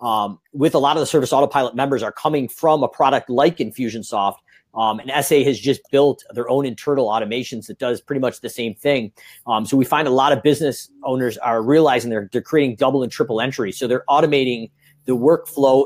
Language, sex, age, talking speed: English, male, 40-59, 210 wpm